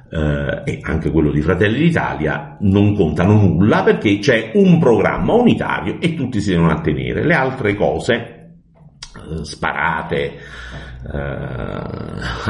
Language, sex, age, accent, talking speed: Italian, male, 50-69, native, 125 wpm